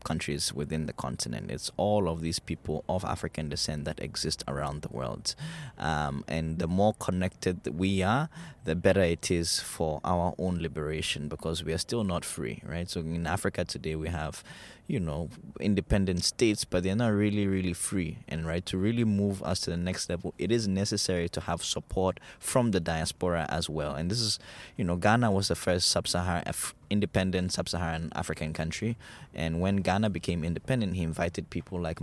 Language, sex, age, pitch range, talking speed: English, male, 20-39, 80-100 Hz, 185 wpm